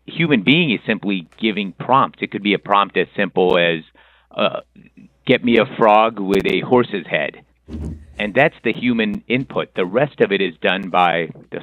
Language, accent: English, American